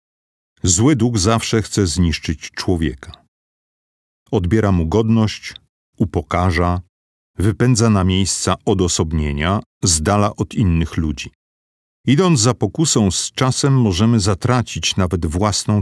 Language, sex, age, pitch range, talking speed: Polish, male, 50-69, 85-115 Hz, 100 wpm